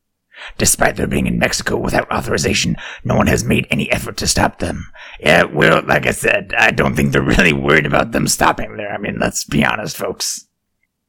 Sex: male